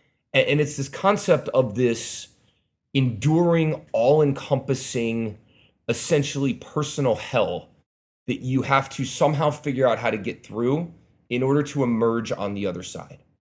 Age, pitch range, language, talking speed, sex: 30-49, 115-145 Hz, English, 135 wpm, male